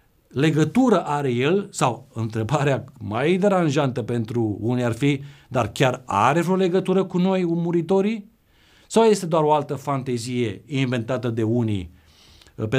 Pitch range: 115-155 Hz